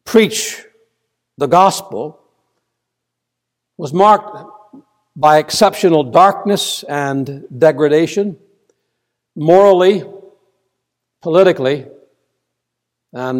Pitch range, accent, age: 140-200 Hz, American, 60-79